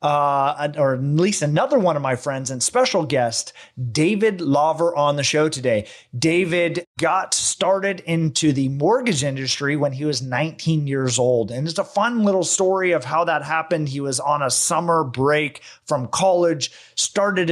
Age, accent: 30-49, American